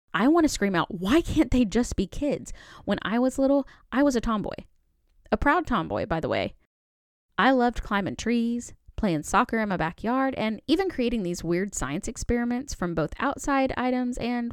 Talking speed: 190 wpm